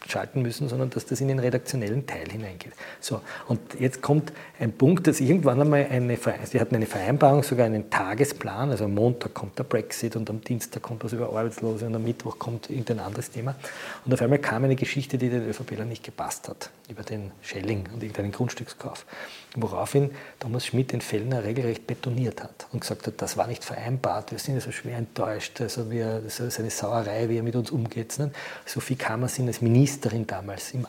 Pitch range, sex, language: 110-135 Hz, male, German